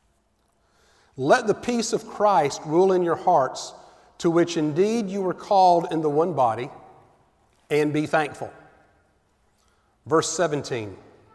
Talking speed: 125 wpm